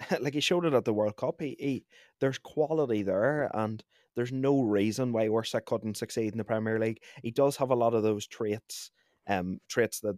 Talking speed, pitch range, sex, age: 210 wpm, 105-130 Hz, male, 20-39